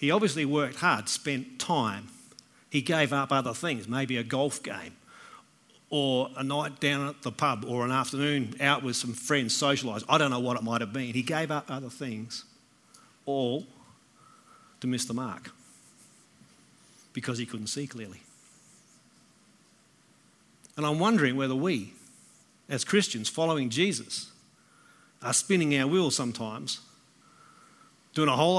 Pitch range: 135-160 Hz